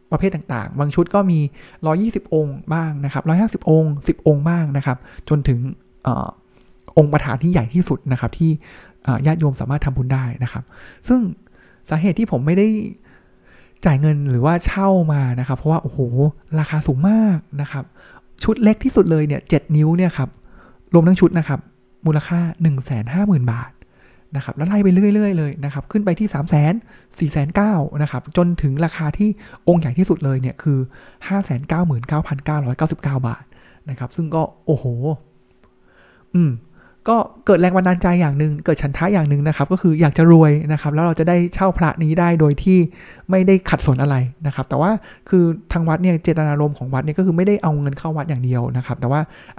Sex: male